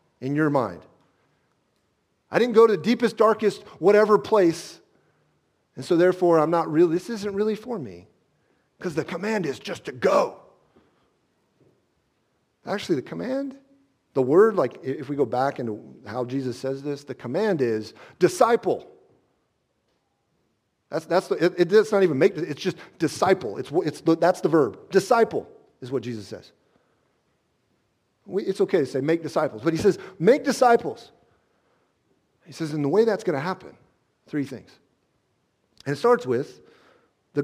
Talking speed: 160 wpm